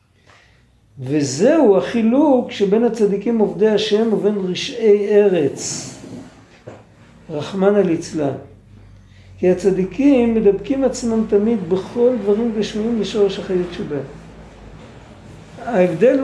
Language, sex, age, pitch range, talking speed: Hebrew, male, 60-79, 165-215 Hz, 90 wpm